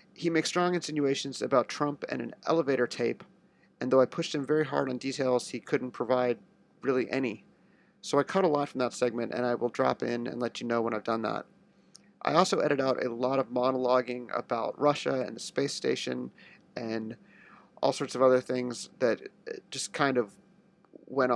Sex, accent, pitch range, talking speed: male, American, 125-145 Hz, 195 wpm